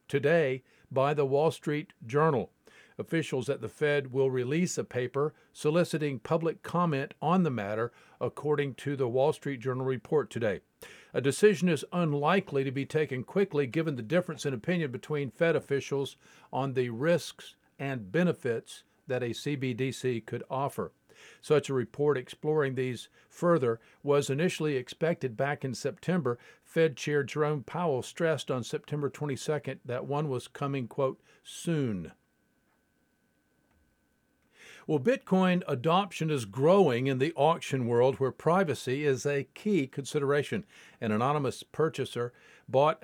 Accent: American